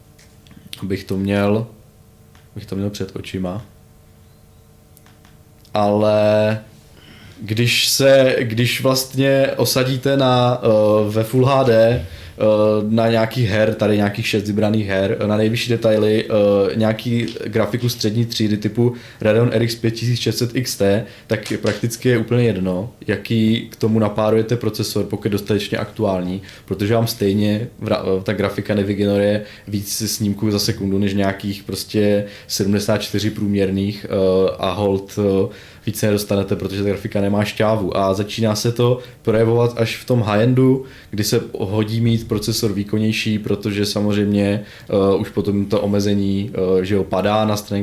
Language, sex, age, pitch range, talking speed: Czech, male, 20-39, 100-115 Hz, 130 wpm